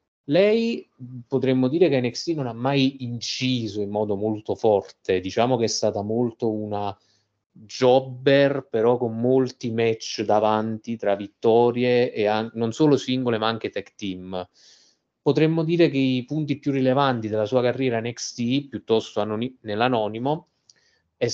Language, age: Italian, 30-49